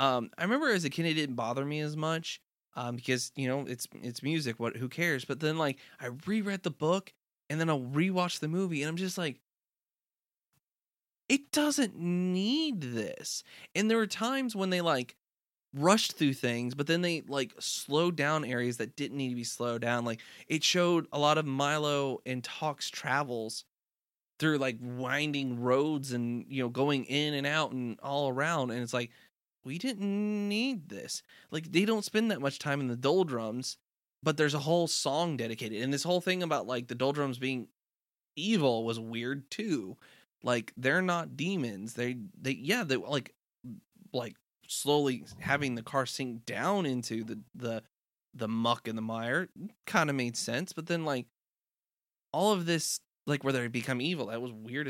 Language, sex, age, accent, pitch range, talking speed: English, male, 20-39, American, 125-170 Hz, 185 wpm